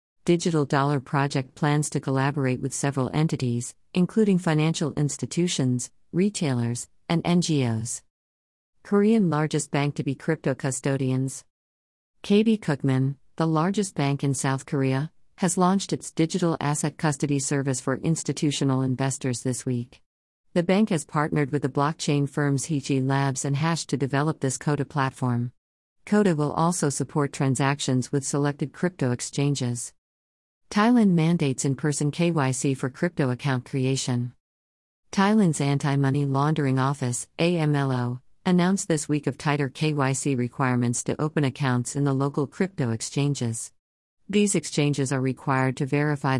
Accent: American